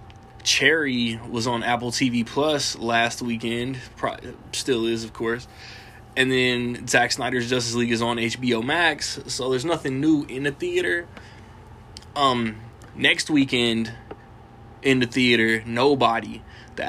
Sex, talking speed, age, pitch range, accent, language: male, 130 wpm, 20-39, 115-125 Hz, American, English